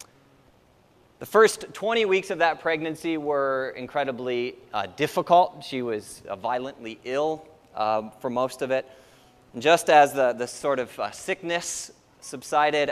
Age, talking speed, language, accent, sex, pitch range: 30-49, 140 wpm, English, American, male, 120-155 Hz